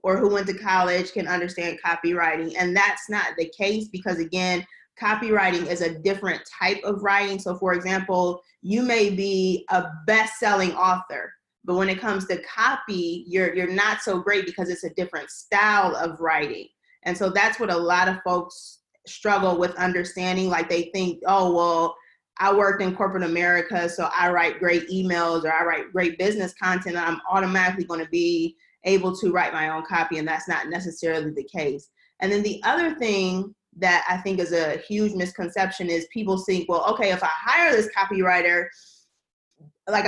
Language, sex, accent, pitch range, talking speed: English, female, American, 180-210 Hz, 180 wpm